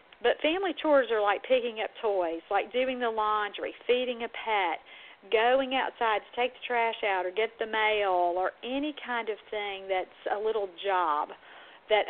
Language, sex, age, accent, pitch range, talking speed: English, female, 50-69, American, 200-270 Hz, 180 wpm